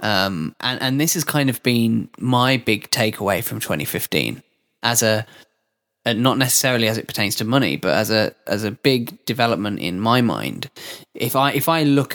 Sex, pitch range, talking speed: male, 110-130 Hz, 190 wpm